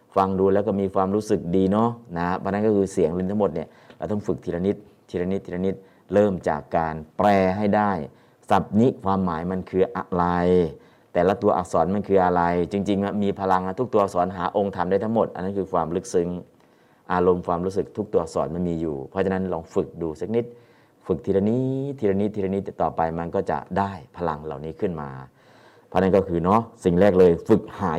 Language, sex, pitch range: Thai, male, 85-100 Hz